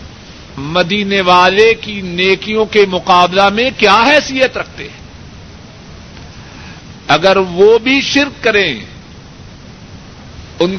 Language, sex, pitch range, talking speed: Urdu, male, 175-225 Hz, 90 wpm